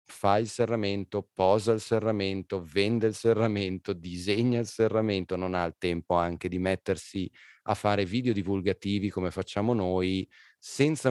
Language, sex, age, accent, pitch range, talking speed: Italian, male, 30-49, native, 95-105 Hz, 145 wpm